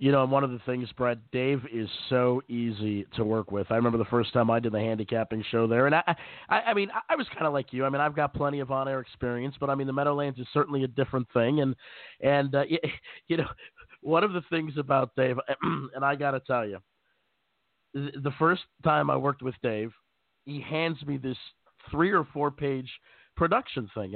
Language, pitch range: English, 120-145 Hz